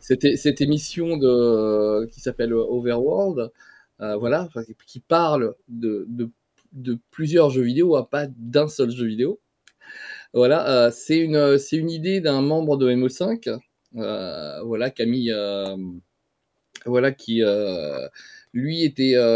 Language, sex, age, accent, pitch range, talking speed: French, male, 20-39, French, 115-150 Hz, 135 wpm